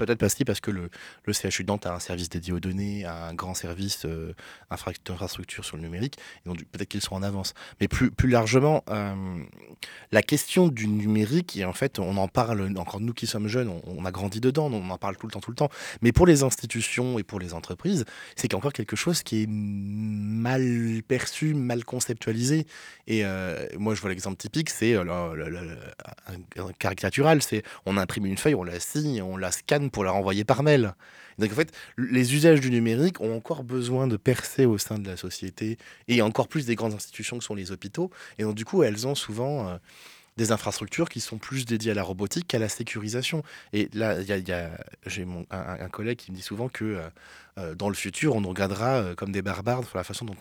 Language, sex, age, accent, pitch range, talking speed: French, male, 20-39, French, 95-125 Hz, 220 wpm